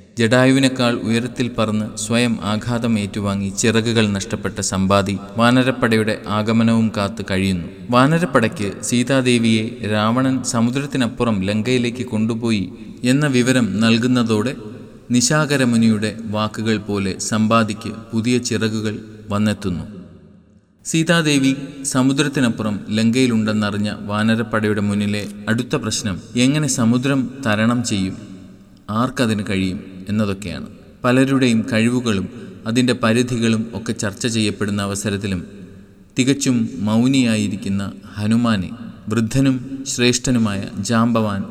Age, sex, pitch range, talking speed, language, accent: 20-39, male, 100-120 Hz, 85 wpm, Malayalam, native